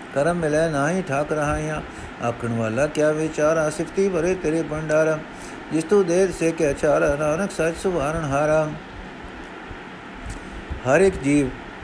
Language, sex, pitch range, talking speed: Punjabi, male, 130-165 Hz, 140 wpm